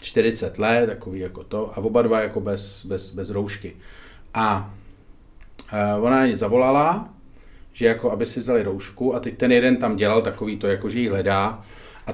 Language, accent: Czech, native